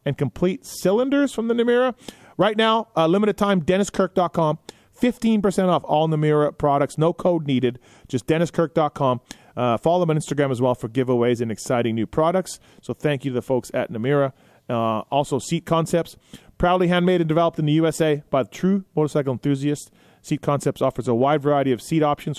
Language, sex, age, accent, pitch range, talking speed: English, male, 30-49, American, 130-175 Hz, 180 wpm